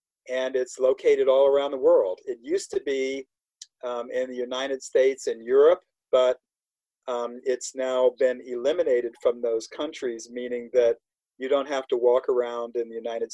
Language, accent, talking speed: English, American, 170 wpm